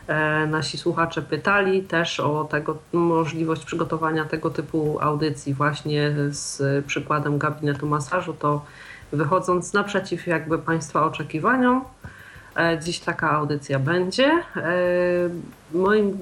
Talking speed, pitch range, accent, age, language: 95 wpm, 160-185 Hz, native, 40-59, Polish